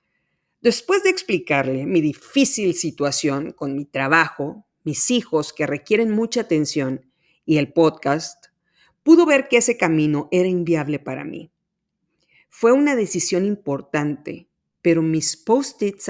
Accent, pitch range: Mexican, 150-200 Hz